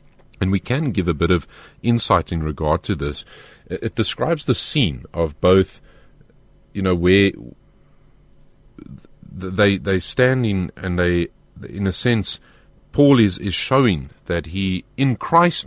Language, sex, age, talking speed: English, male, 40-59, 145 wpm